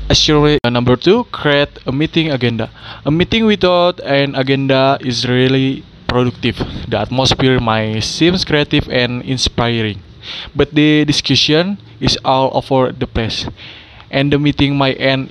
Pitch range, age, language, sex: 110-140 Hz, 20-39, English, male